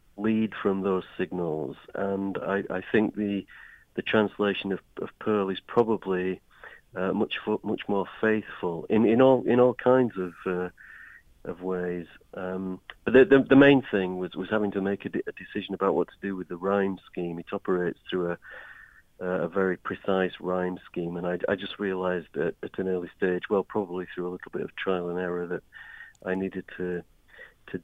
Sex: male